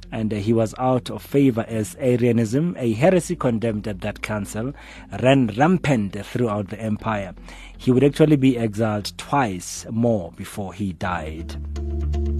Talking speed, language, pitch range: 140 wpm, English, 100-130 Hz